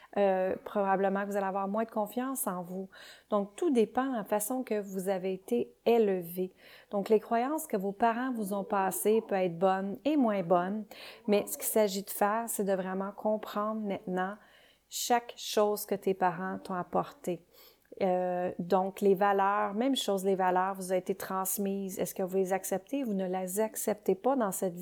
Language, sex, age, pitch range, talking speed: French, female, 30-49, 190-225 Hz, 190 wpm